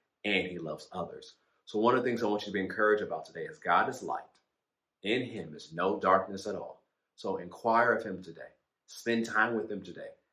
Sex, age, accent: male, 30-49, American